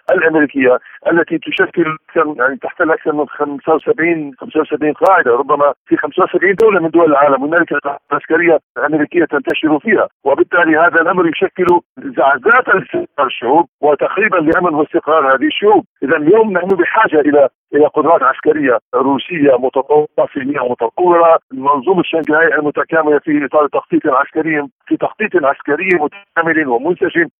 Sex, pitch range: male, 150-205 Hz